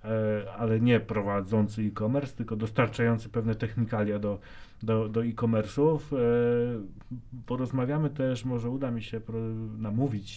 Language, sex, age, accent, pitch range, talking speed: Polish, male, 30-49, native, 105-120 Hz, 110 wpm